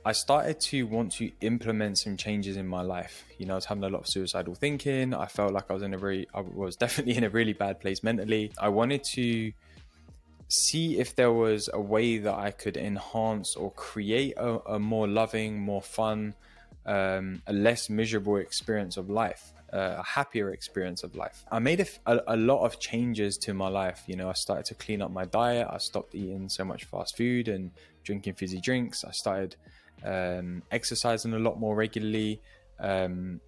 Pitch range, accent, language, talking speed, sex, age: 95-115 Hz, British, English, 200 wpm, male, 10-29